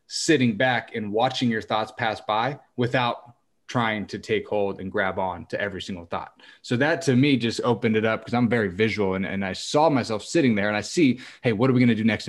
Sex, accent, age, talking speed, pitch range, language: male, American, 30-49, 245 wpm, 100-130 Hz, English